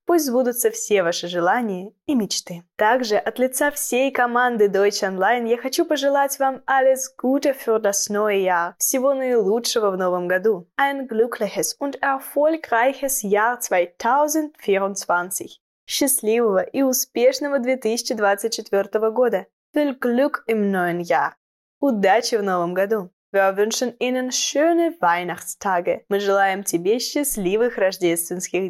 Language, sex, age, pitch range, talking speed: Russian, female, 10-29, 190-265 Hz, 125 wpm